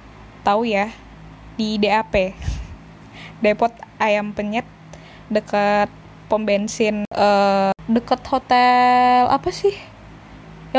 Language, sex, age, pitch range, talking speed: Indonesian, female, 10-29, 210-255 Hz, 95 wpm